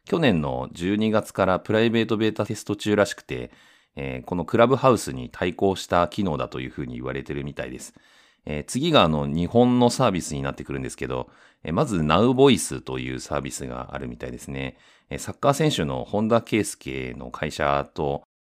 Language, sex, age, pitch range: Japanese, male, 40-59, 65-105 Hz